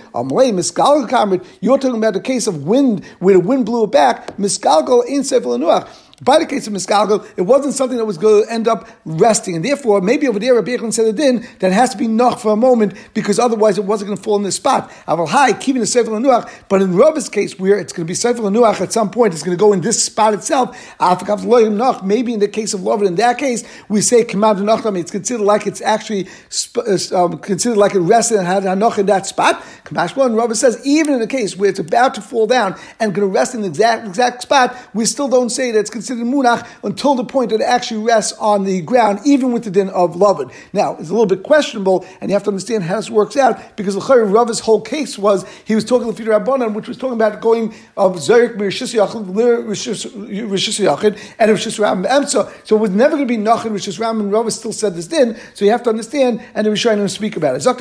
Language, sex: English, male